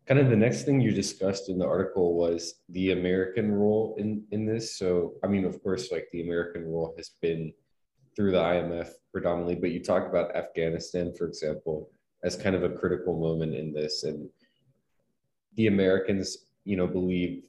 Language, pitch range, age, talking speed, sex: English, 85-100 Hz, 20-39, 180 wpm, male